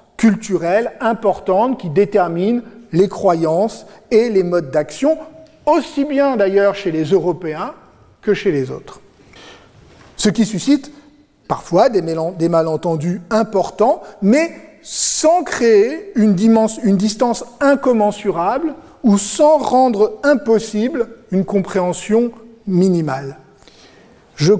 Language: French